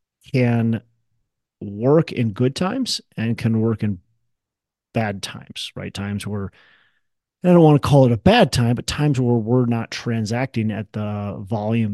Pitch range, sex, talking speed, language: 105-130 Hz, male, 160 wpm, English